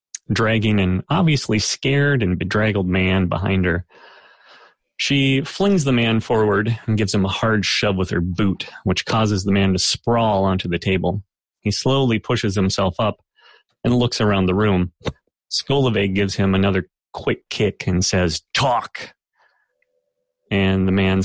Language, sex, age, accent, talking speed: English, male, 30-49, American, 155 wpm